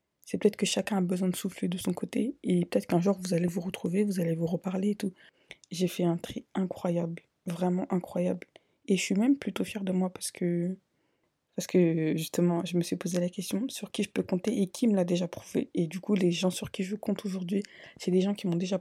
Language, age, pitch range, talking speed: French, 20-39, 175-200 Hz, 250 wpm